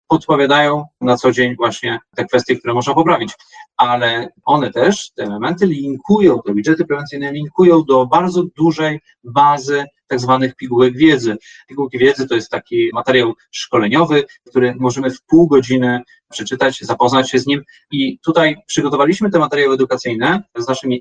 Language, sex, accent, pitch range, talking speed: Polish, male, native, 130-170 Hz, 150 wpm